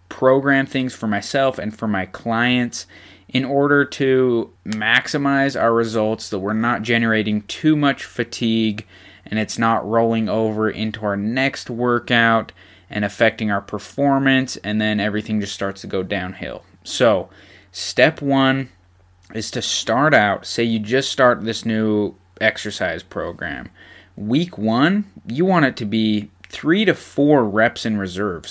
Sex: male